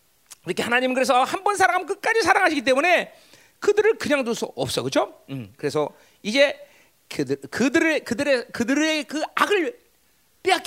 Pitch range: 230-360 Hz